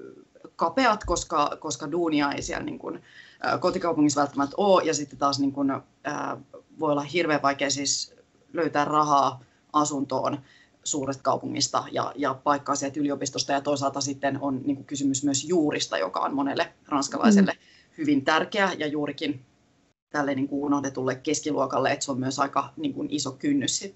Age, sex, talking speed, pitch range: 30-49, female, 155 wpm, 140-175 Hz